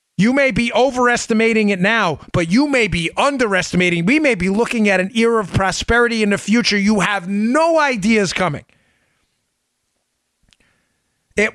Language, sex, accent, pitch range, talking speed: English, male, American, 145-215 Hz, 150 wpm